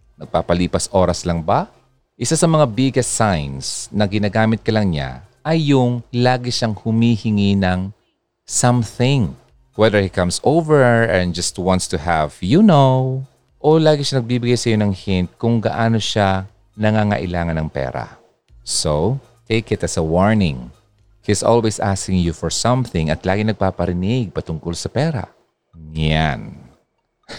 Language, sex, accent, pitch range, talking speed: Filipino, male, native, 90-115 Hz, 140 wpm